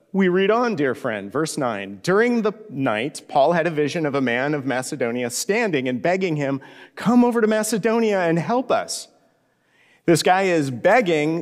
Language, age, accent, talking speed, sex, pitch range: English, 40-59, American, 180 wpm, male, 145-190 Hz